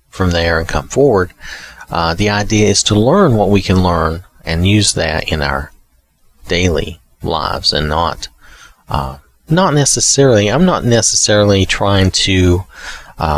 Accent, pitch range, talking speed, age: American, 80-110 Hz, 150 wpm, 30-49